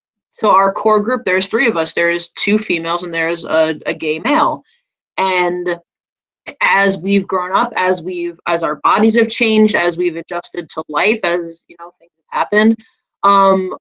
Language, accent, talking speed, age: English, American, 175 wpm, 20-39